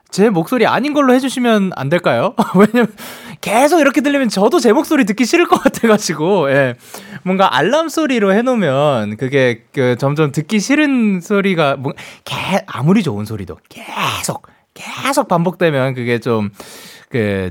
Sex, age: male, 20-39